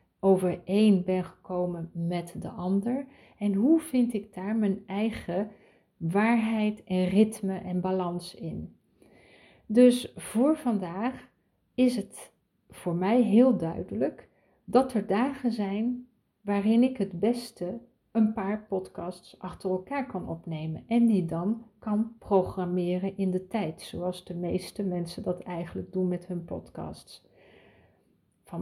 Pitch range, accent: 185-230 Hz, Dutch